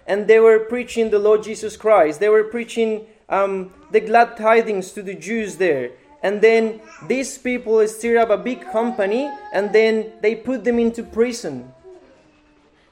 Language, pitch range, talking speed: English, 215-245 Hz, 165 wpm